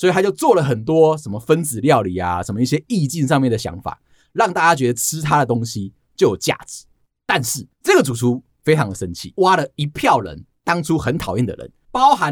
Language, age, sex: Chinese, 30-49, male